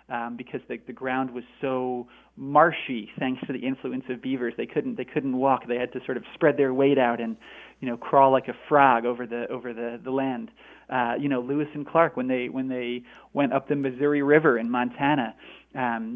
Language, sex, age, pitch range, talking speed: English, male, 30-49, 125-150 Hz, 225 wpm